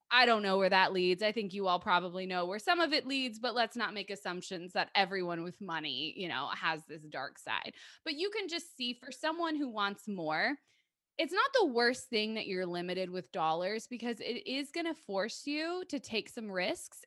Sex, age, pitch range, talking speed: female, 20-39, 215-315 Hz, 220 wpm